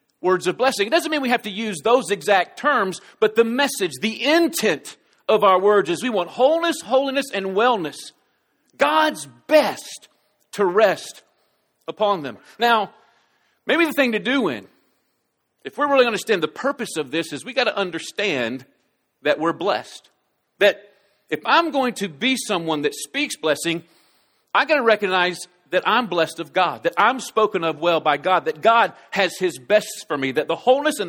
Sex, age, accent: male, 50-69, American